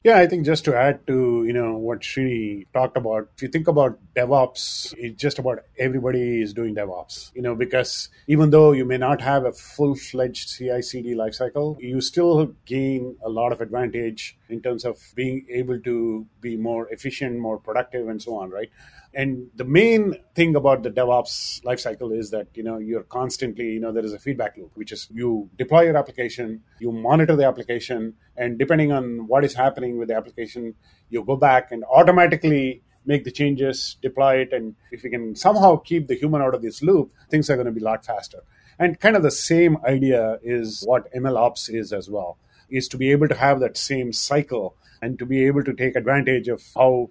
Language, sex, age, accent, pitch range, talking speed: English, male, 30-49, Indian, 120-140 Hz, 205 wpm